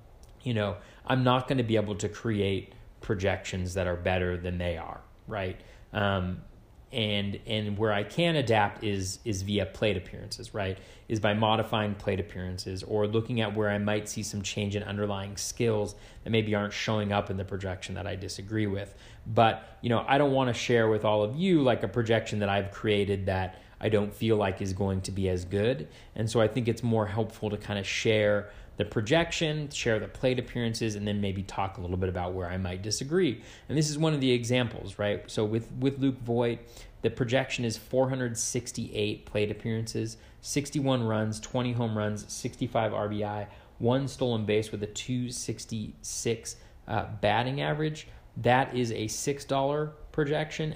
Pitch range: 105-120 Hz